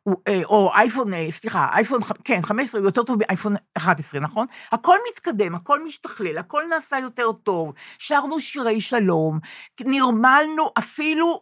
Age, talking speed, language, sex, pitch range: 50-69, 135 wpm, Hebrew, female, 200-275 Hz